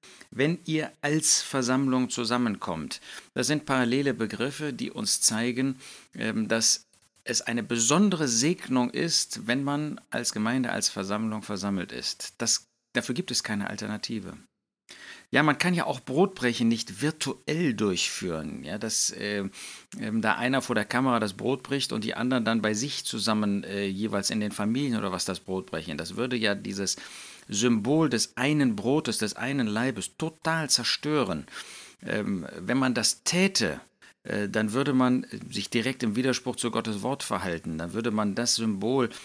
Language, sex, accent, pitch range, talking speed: German, male, German, 110-140 Hz, 155 wpm